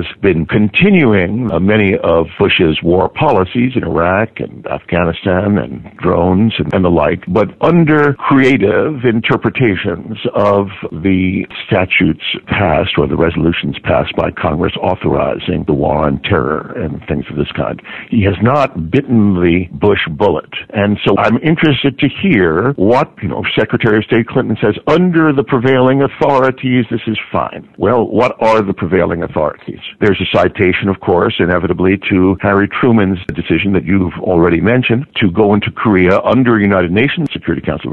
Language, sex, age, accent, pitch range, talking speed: English, male, 60-79, American, 90-115 Hz, 155 wpm